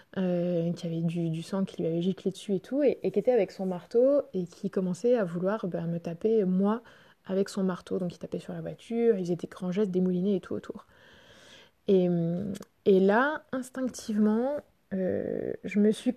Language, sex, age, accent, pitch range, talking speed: French, female, 20-39, French, 185-225 Hz, 205 wpm